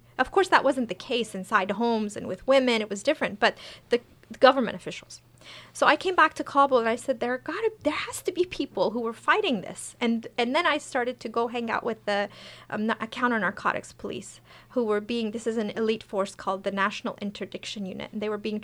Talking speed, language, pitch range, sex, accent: 225 wpm, English, 205-255 Hz, female, American